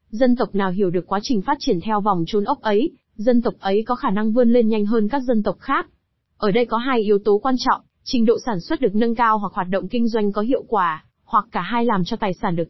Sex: female